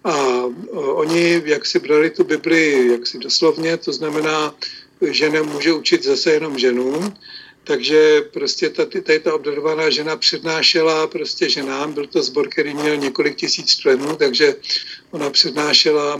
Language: Czech